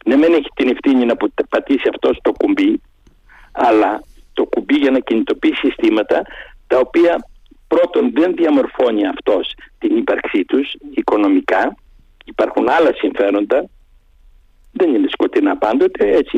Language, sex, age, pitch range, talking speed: Greek, male, 60-79, 285-370 Hz, 130 wpm